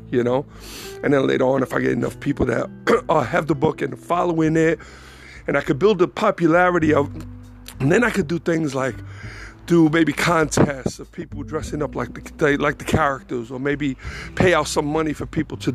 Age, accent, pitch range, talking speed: 50-69, American, 110-160 Hz, 205 wpm